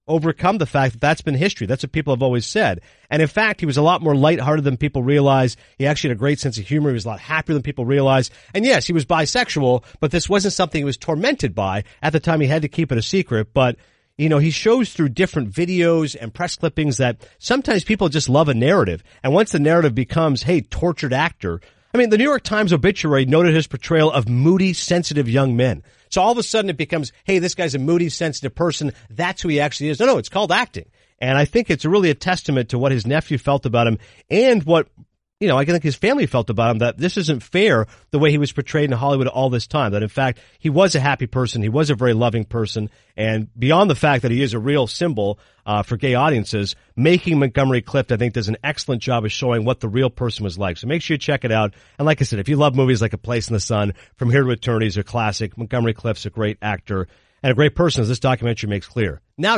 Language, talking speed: English, 255 wpm